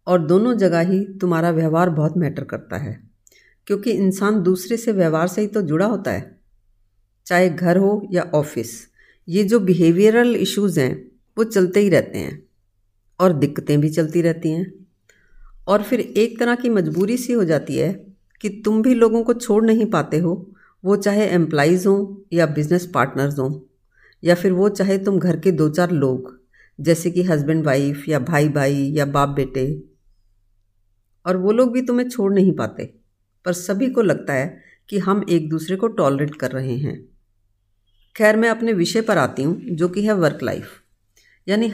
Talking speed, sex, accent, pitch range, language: 180 wpm, female, native, 145-205 Hz, Hindi